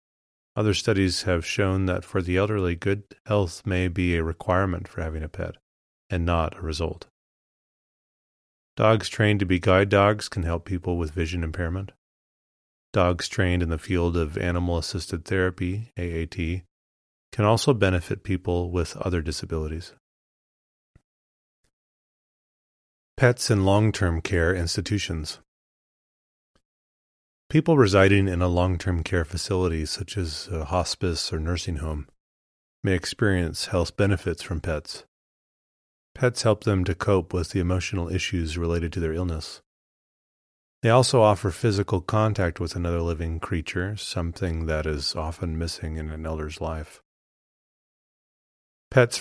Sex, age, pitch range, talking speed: male, 30-49, 80-100 Hz, 130 wpm